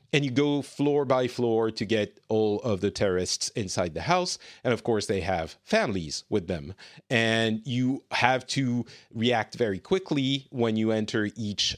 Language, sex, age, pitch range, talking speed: English, male, 40-59, 105-135 Hz, 175 wpm